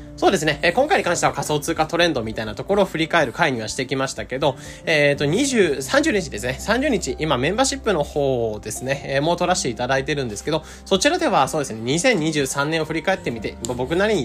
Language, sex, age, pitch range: Japanese, male, 20-39, 130-175 Hz